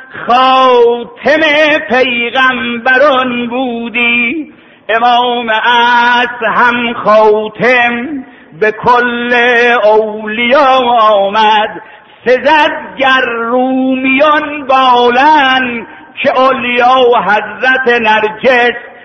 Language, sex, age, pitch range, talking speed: Persian, male, 50-69, 215-255 Hz, 60 wpm